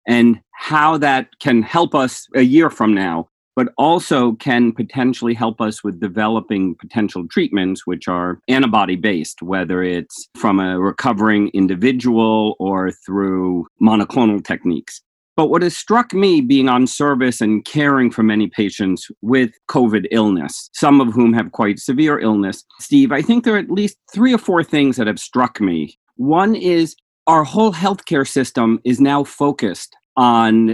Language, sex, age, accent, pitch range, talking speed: English, male, 40-59, American, 105-140 Hz, 160 wpm